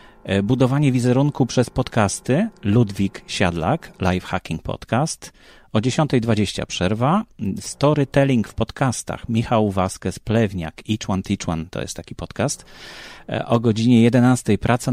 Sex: male